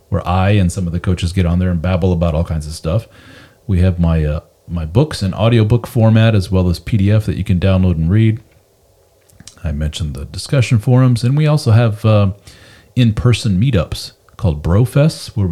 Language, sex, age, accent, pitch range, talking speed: English, male, 40-59, American, 90-120 Hz, 195 wpm